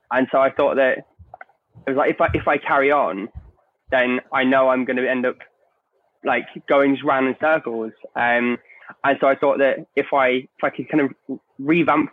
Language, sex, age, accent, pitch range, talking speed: English, male, 20-39, British, 125-150 Hz, 210 wpm